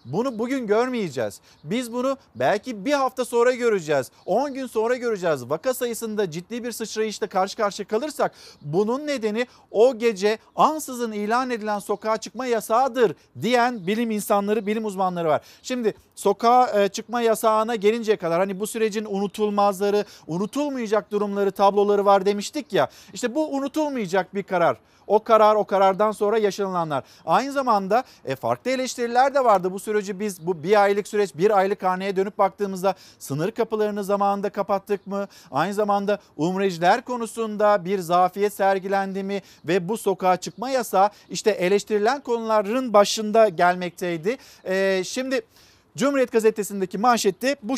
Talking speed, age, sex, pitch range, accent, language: 140 wpm, 50-69, male, 195-235 Hz, native, Turkish